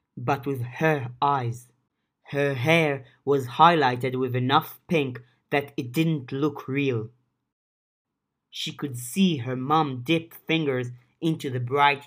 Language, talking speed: English, 130 wpm